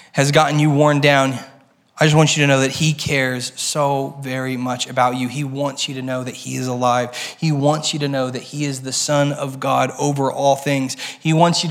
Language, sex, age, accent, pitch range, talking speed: English, male, 20-39, American, 135-160 Hz, 235 wpm